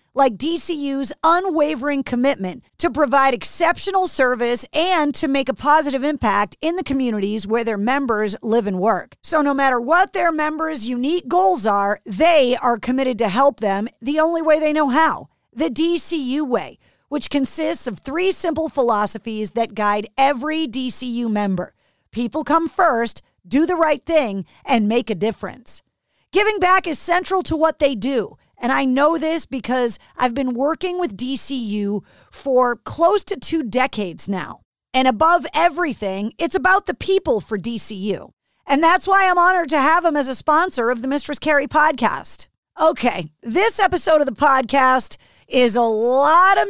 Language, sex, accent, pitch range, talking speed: English, female, American, 235-320 Hz, 165 wpm